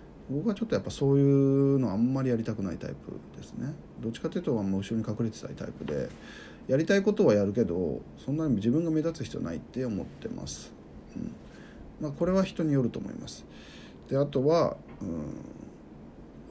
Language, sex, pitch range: Japanese, male, 115-175 Hz